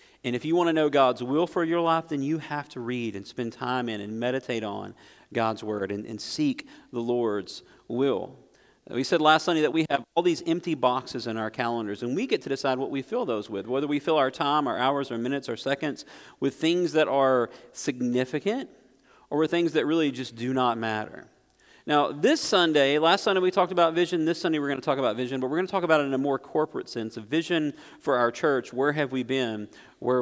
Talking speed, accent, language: 235 wpm, American, English